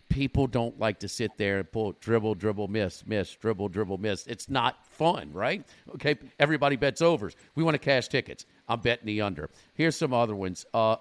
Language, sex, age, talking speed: English, male, 50-69, 200 wpm